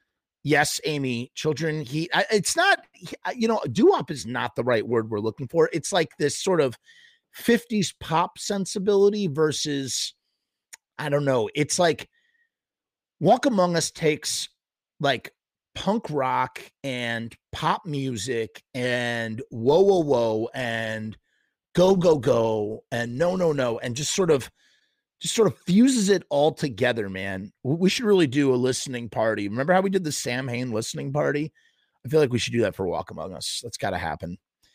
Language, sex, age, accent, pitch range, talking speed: English, male, 30-49, American, 120-175 Hz, 165 wpm